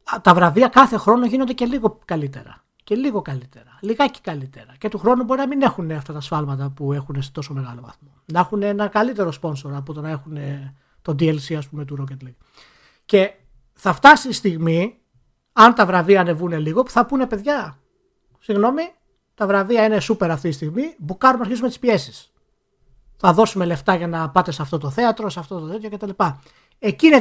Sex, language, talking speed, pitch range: male, Greek, 195 wpm, 155-225 Hz